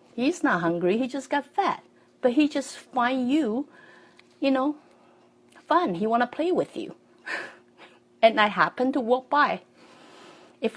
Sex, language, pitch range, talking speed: female, English, 180-280 Hz, 155 wpm